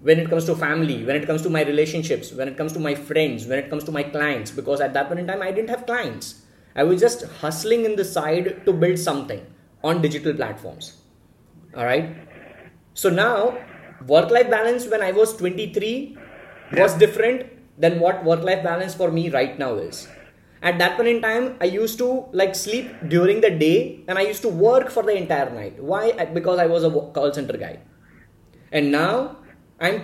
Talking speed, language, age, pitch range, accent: 200 wpm, English, 20-39, 155-220 Hz, Indian